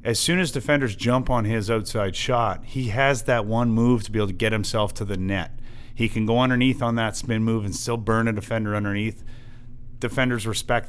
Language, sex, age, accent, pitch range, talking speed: English, male, 30-49, American, 105-125 Hz, 215 wpm